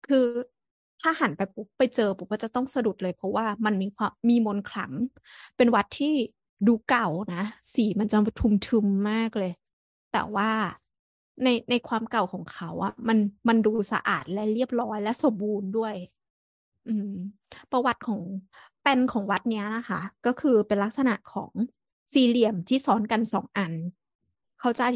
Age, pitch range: 20-39, 200-245 Hz